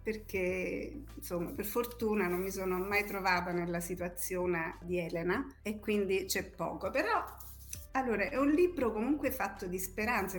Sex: female